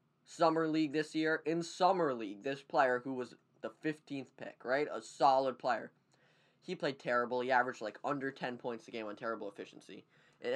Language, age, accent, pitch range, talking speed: English, 10-29, American, 125-155 Hz, 190 wpm